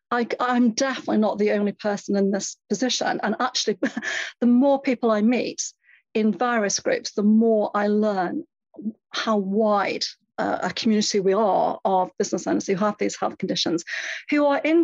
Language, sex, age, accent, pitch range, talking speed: English, female, 40-59, British, 200-245 Hz, 170 wpm